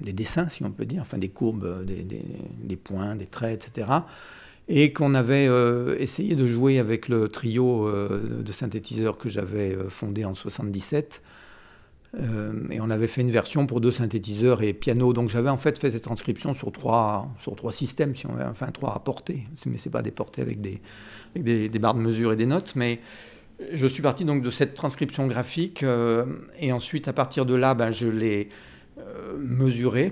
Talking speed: 205 wpm